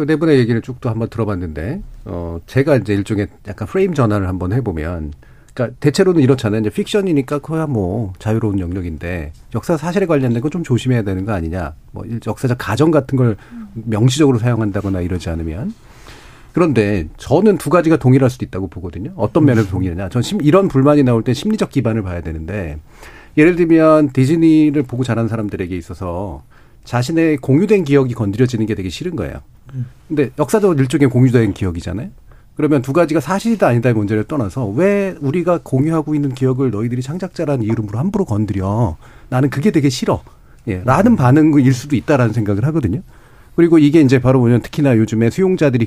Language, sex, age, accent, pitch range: Korean, male, 40-59, native, 105-150 Hz